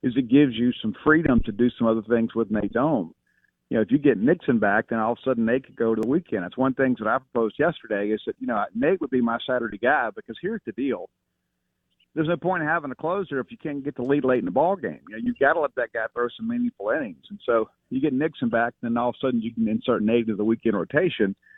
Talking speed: 285 wpm